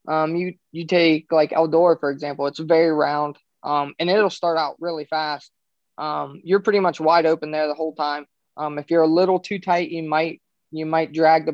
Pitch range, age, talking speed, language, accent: 155-180 Hz, 20-39, 215 wpm, English, American